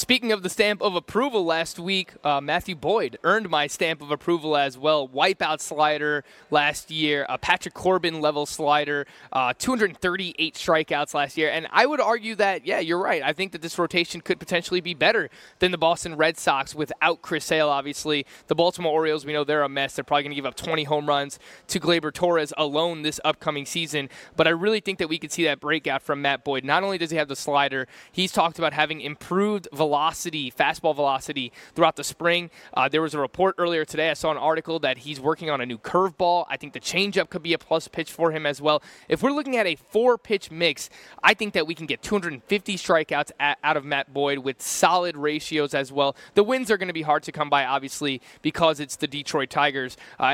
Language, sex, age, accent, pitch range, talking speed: English, male, 20-39, American, 145-175 Hz, 225 wpm